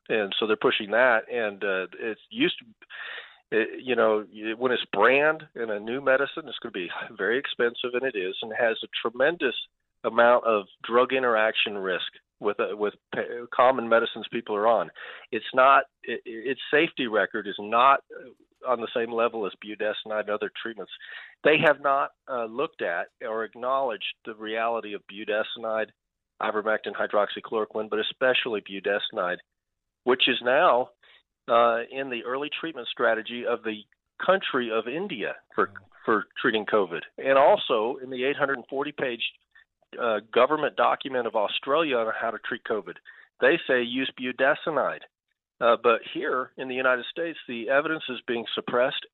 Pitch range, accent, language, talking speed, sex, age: 115-145 Hz, American, English, 160 wpm, male, 40-59